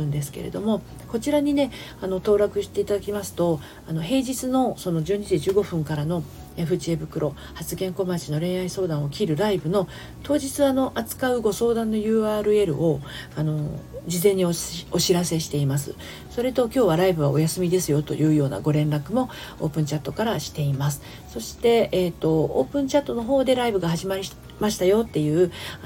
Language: Japanese